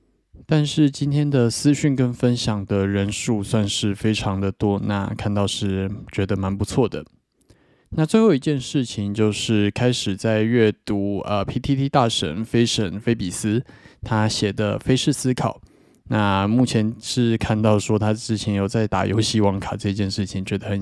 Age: 20-39